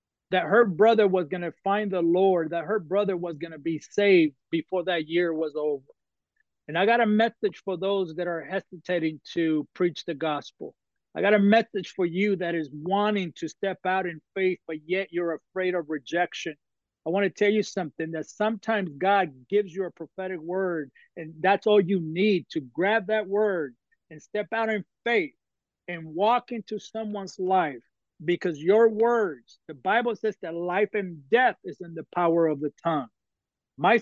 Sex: male